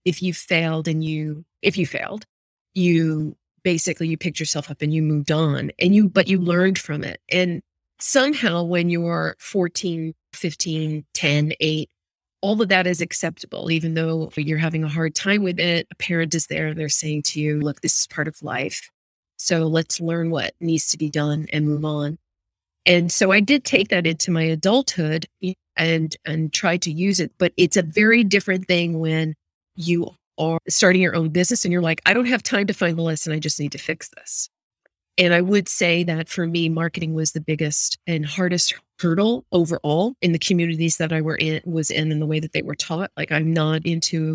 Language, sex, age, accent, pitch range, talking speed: English, female, 30-49, American, 155-180 Hz, 210 wpm